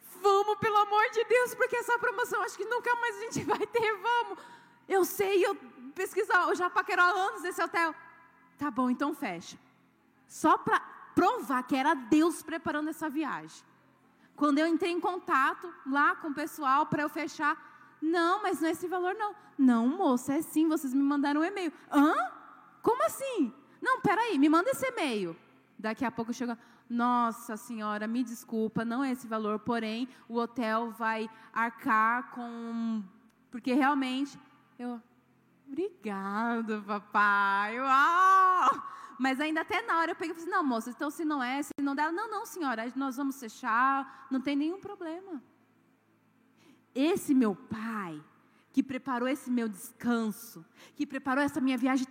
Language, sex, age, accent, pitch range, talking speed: Portuguese, female, 10-29, Brazilian, 245-360 Hz, 160 wpm